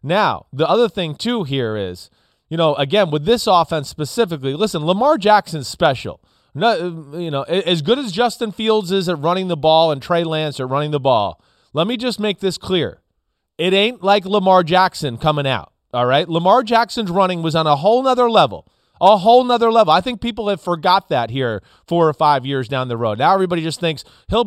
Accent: American